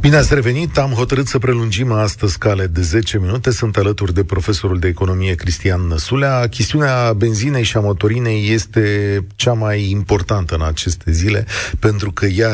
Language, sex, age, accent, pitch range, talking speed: Romanian, male, 40-59, native, 95-120 Hz, 170 wpm